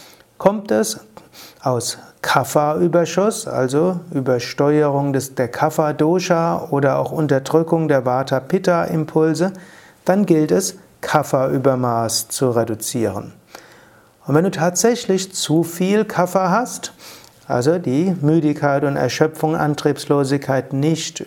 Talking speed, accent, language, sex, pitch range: 100 wpm, German, German, male, 135-180 Hz